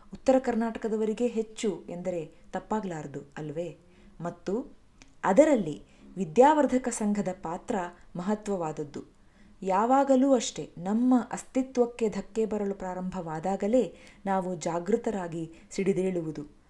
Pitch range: 175-225 Hz